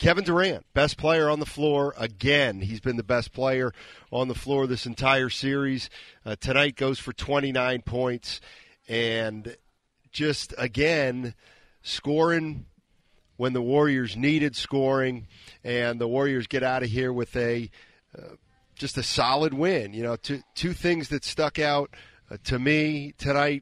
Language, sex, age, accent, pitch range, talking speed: English, male, 40-59, American, 125-155 Hz, 150 wpm